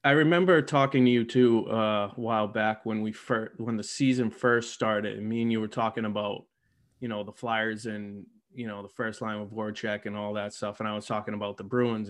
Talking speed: 245 wpm